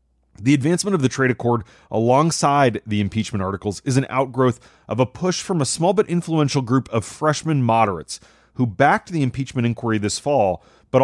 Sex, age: male, 30-49